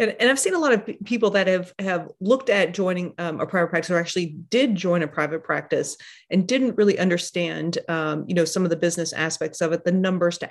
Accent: American